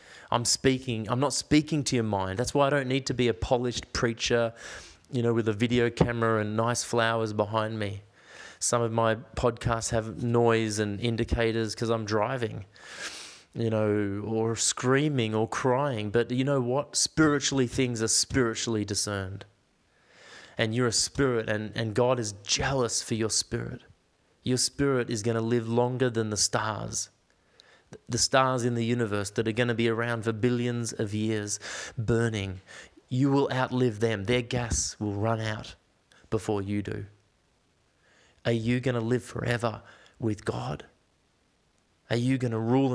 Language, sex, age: English, male, 20-39